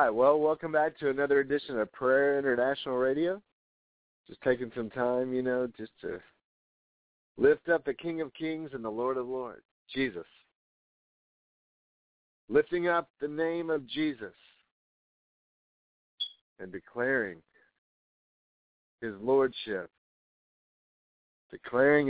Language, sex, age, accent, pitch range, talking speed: English, male, 50-69, American, 115-140 Hz, 110 wpm